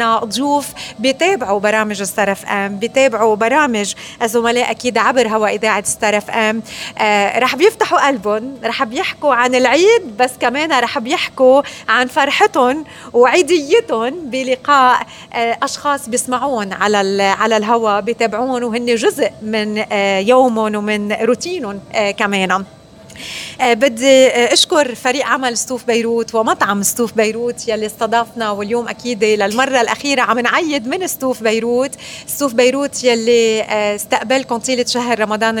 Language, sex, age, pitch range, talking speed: Arabic, female, 30-49, 215-260 Hz, 115 wpm